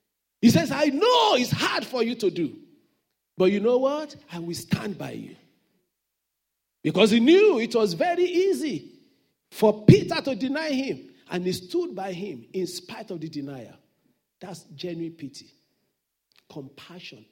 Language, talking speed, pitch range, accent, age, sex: English, 155 wpm, 175-270 Hz, Nigerian, 50-69, male